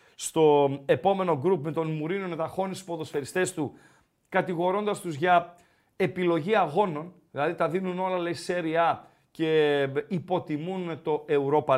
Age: 40-59